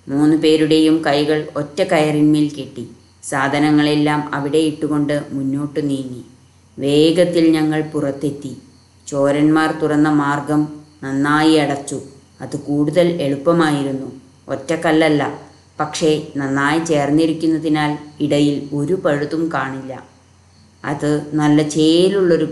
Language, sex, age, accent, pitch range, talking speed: Malayalam, female, 20-39, native, 140-155 Hz, 85 wpm